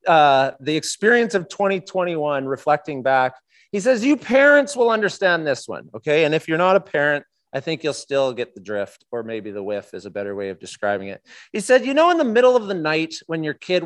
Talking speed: 230 wpm